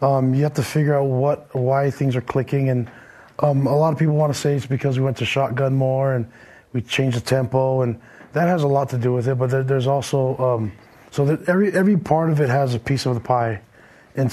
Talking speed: 250 wpm